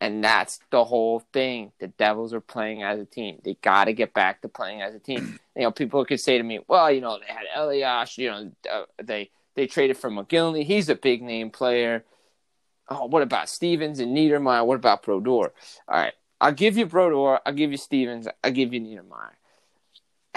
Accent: American